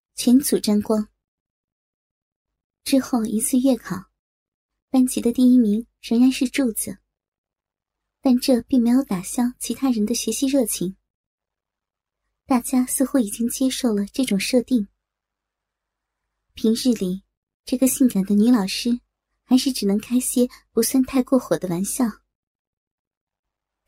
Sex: male